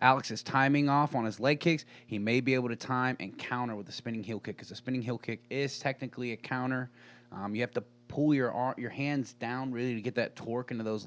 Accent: American